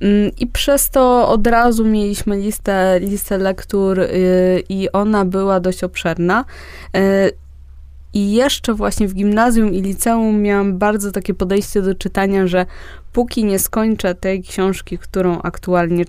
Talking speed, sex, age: 140 wpm, female, 20-39